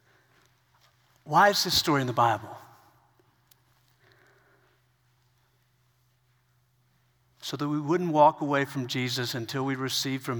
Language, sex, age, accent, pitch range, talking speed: English, male, 50-69, American, 125-195 Hz, 110 wpm